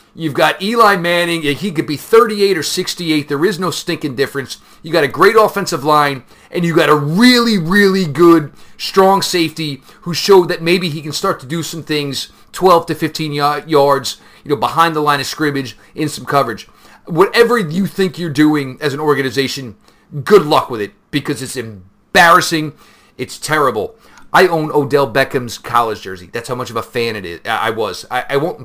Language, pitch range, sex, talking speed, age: English, 125-165 Hz, male, 195 wpm, 40-59